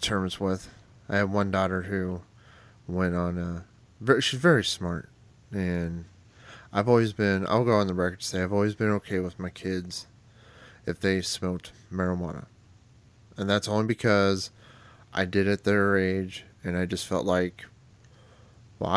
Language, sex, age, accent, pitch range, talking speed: English, male, 30-49, American, 95-110 Hz, 160 wpm